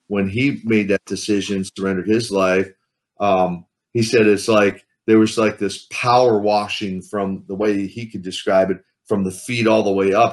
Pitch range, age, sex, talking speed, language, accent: 95-120 Hz, 40-59, male, 190 wpm, English, American